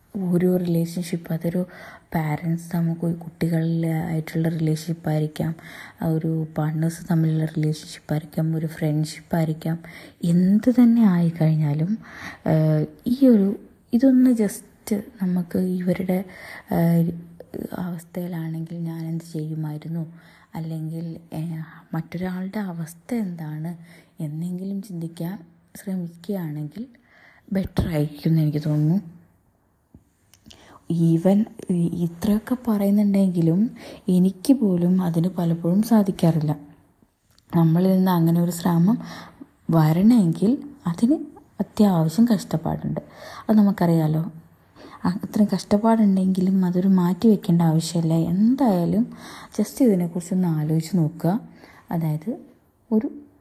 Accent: native